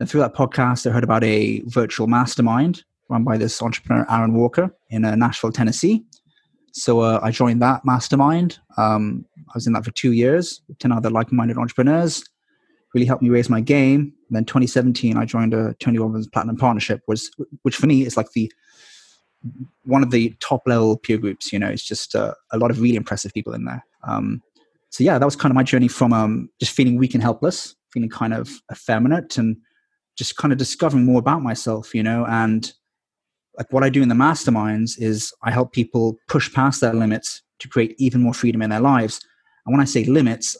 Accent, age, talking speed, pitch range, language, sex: British, 20-39, 210 wpm, 115-130 Hz, English, male